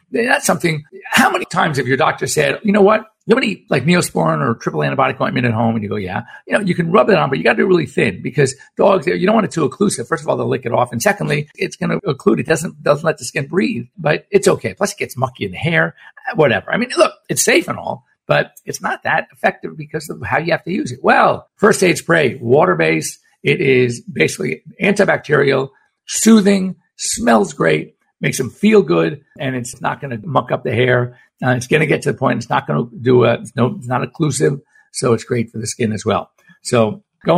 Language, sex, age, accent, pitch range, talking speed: English, male, 50-69, American, 125-190 Hz, 245 wpm